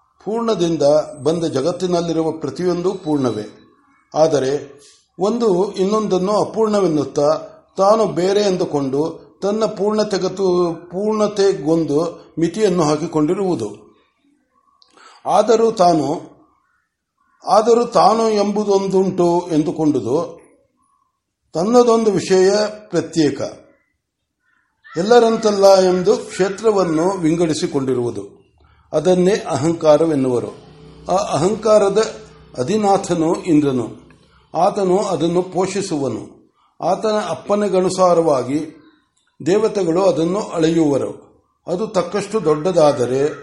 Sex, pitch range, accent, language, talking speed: male, 160-210 Hz, native, Kannada, 65 wpm